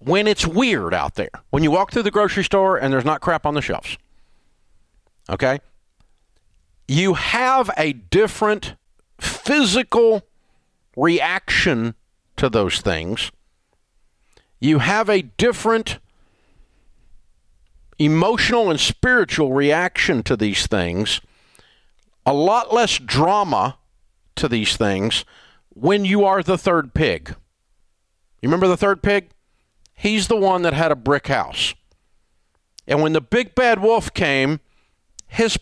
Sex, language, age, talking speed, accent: male, English, 50-69, 125 wpm, American